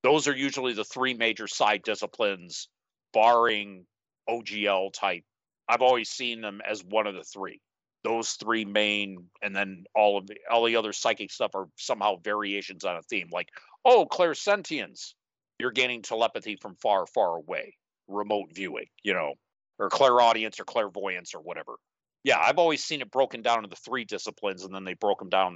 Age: 50-69